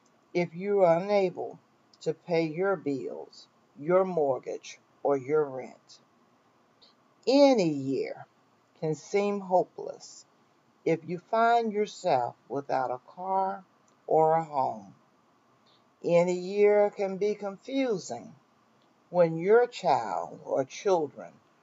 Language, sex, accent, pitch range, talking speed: English, female, American, 155-205 Hz, 105 wpm